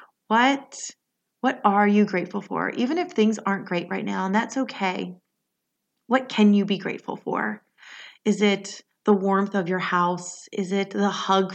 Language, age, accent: English, 30-49, American